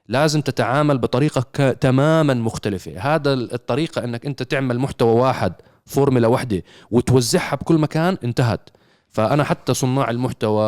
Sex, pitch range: male, 120-155 Hz